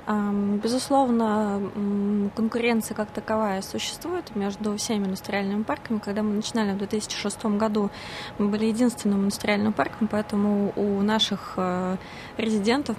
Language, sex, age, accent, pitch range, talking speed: Russian, female, 20-39, native, 200-230 Hz, 110 wpm